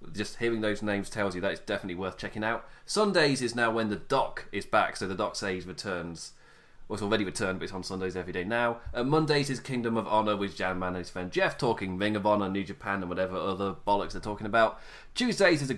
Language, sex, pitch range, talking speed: English, male, 100-135 Hz, 250 wpm